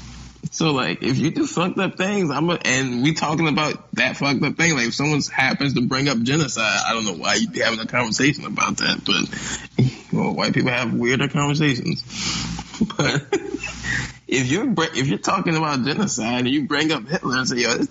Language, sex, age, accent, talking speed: English, male, 20-39, American, 205 wpm